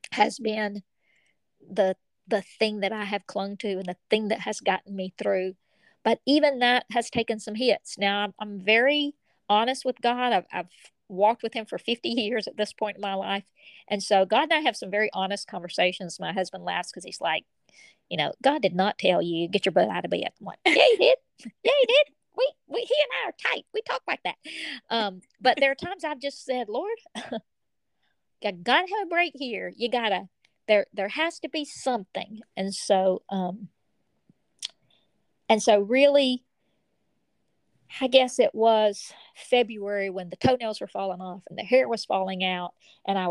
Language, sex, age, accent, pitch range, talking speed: English, female, 40-59, American, 190-245 Hz, 195 wpm